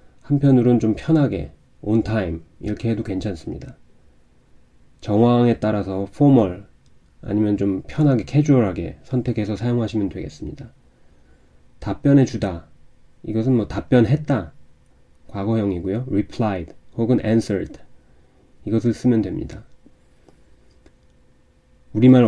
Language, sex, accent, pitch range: Korean, male, native, 95-115 Hz